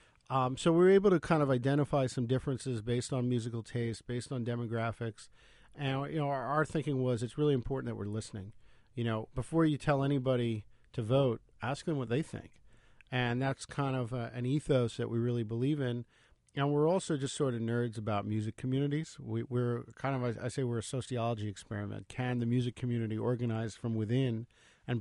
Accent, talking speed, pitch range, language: American, 195 wpm, 115-130 Hz, English